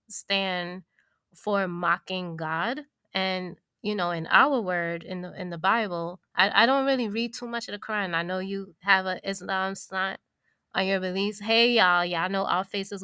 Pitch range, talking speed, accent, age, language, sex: 185-225 Hz, 190 wpm, American, 20-39, English, female